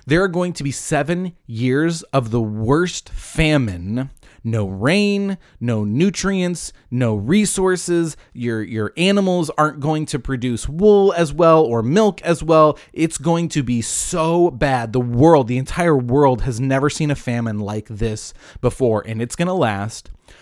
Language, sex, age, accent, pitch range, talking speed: English, male, 30-49, American, 115-165 Hz, 160 wpm